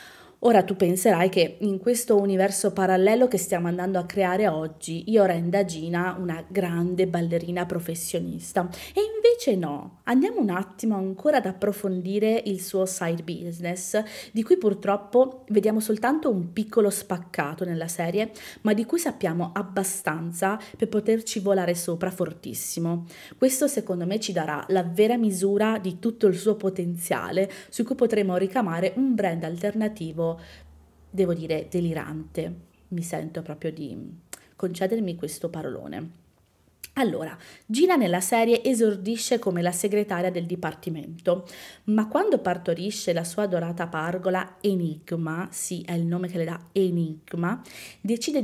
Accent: native